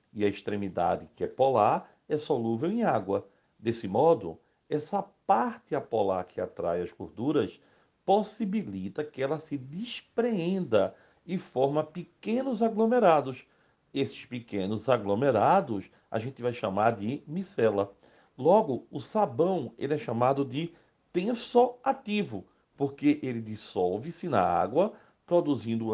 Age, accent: 60-79, Brazilian